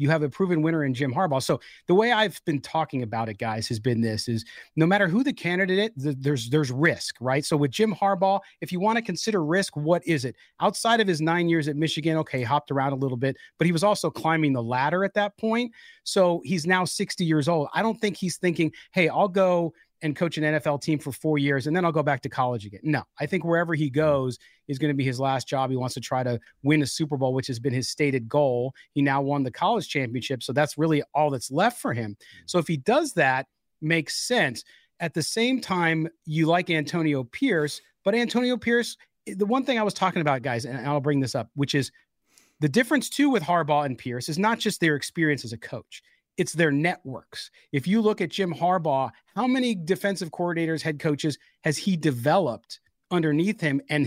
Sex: male